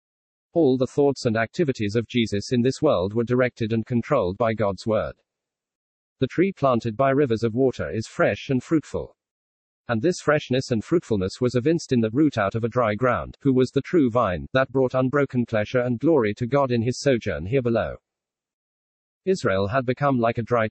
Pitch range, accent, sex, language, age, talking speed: 110-135 Hz, British, male, English, 40-59, 195 wpm